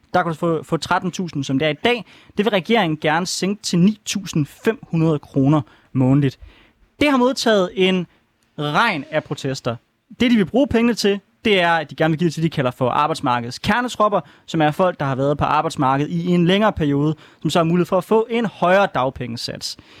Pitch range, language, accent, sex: 145-200 Hz, Danish, native, male